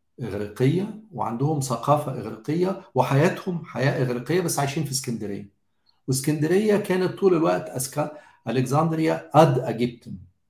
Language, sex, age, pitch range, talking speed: Arabic, male, 50-69, 120-165 Hz, 105 wpm